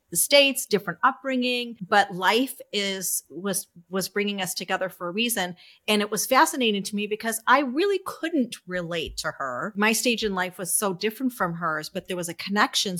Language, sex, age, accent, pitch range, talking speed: English, female, 40-59, American, 170-215 Hz, 190 wpm